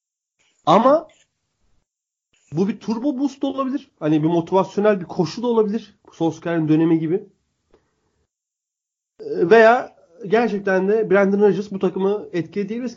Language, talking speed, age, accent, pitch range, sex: Turkish, 110 wpm, 30-49, native, 145-220 Hz, male